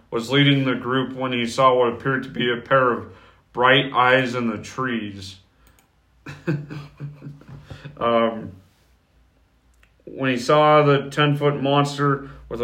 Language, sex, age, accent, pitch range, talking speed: English, male, 40-59, American, 115-135 Hz, 130 wpm